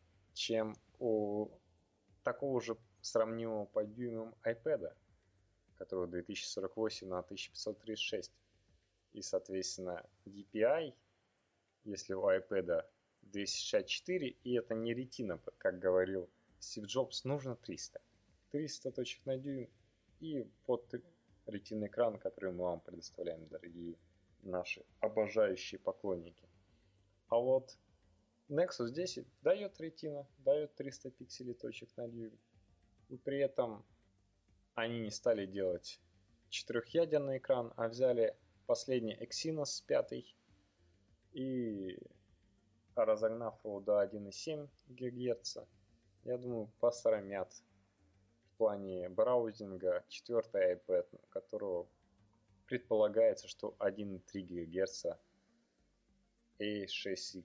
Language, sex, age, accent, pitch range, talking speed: Russian, male, 20-39, native, 95-120 Hz, 95 wpm